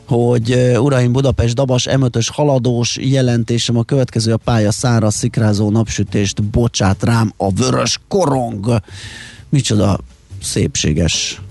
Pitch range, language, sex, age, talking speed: 105-125 Hz, Hungarian, male, 30-49, 110 wpm